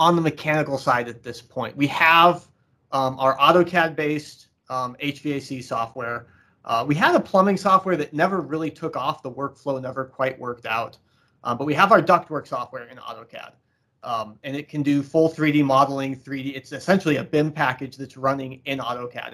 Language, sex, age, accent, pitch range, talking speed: English, male, 30-49, American, 125-155 Hz, 180 wpm